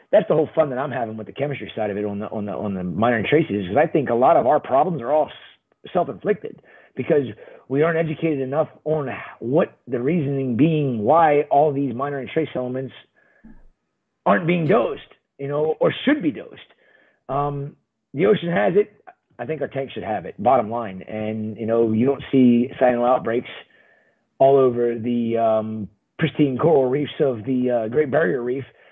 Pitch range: 125-160 Hz